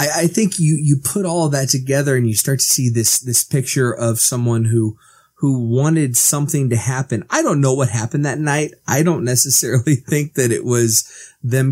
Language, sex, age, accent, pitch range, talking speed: English, male, 20-39, American, 115-150 Hz, 205 wpm